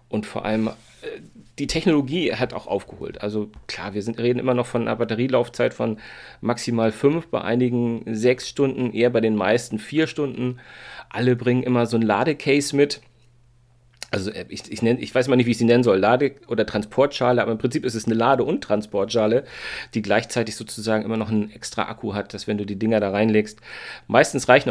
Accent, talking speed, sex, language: German, 190 wpm, male, German